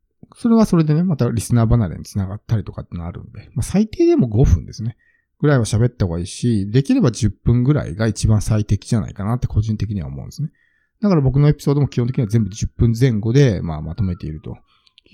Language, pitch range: Japanese, 105-155 Hz